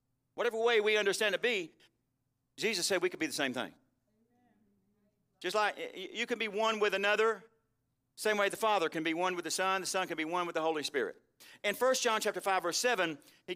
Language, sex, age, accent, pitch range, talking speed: English, male, 50-69, American, 150-230 Hz, 215 wpm